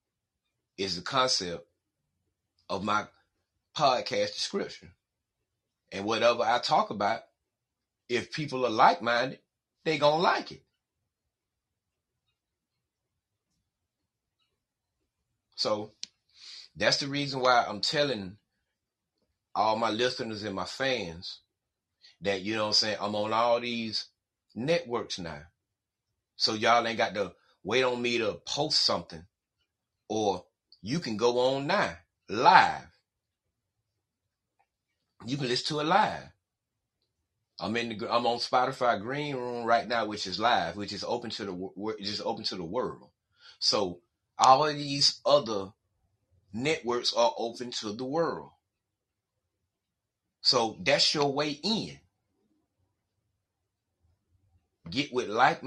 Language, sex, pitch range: English, male, 100-130 Hz